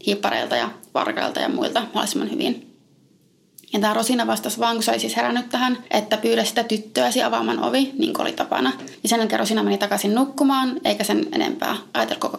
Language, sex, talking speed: Finnish, female, 185 wpm